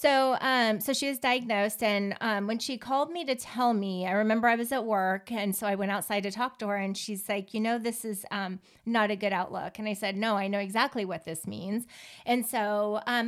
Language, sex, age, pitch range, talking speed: English, female, 30-49, 195-235 Hz, 250 wpm